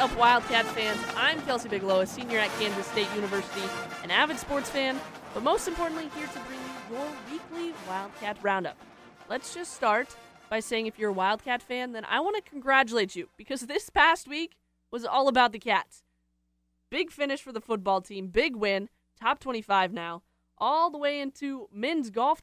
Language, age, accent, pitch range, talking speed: English, 20-39, American, 190-255 Hz, 185 wpm